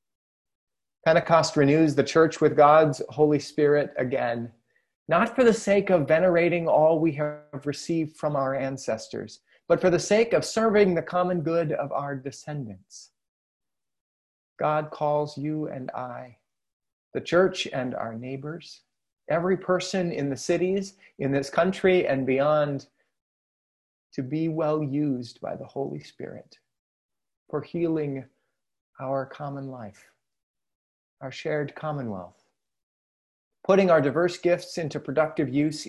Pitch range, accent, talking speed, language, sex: 125-165 Hz, American, 130 wpm, English, male